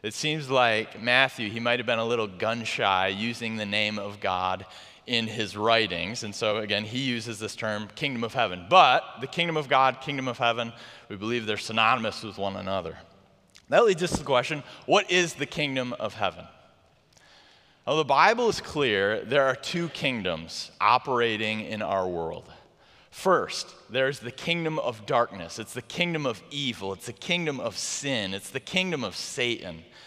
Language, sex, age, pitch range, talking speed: English, male, 30-49, 110-145 Hz, 180 wpm